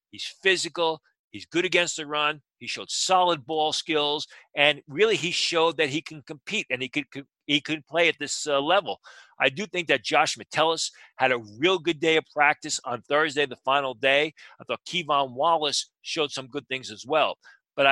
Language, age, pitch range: English, 40-59, 130-165 Hz